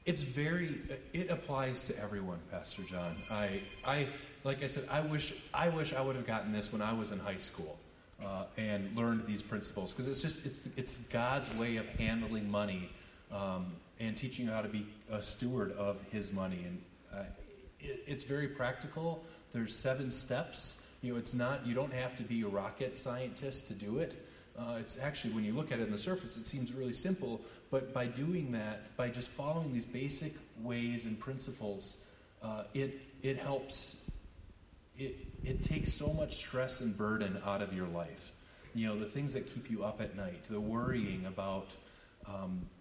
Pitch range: 105-135 Hz